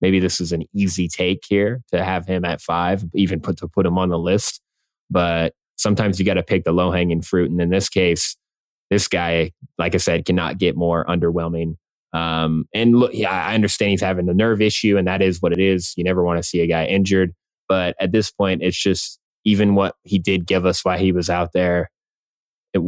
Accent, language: American, English